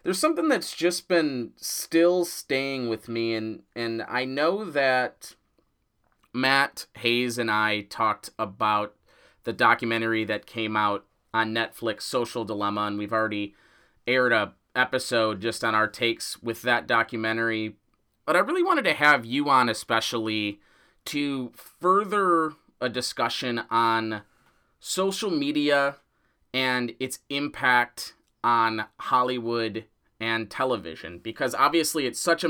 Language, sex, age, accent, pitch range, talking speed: English, male, 30-49, American, 115-140 Hz, 130 wpm